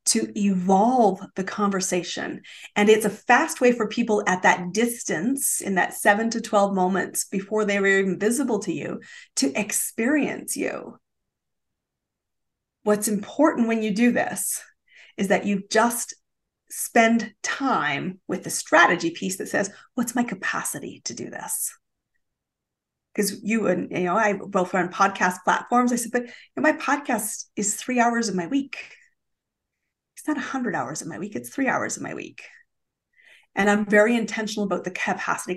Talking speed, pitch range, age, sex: 165 wpm, 195-245 Hz, 30-49, female